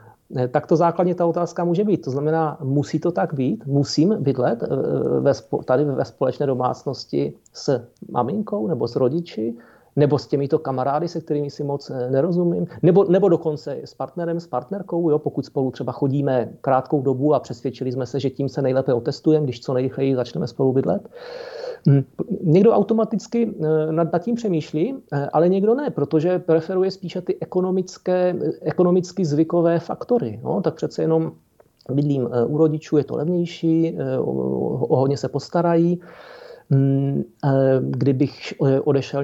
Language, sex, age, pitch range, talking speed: Czech, male, 40-59, 135-175 Hz, 140 wpm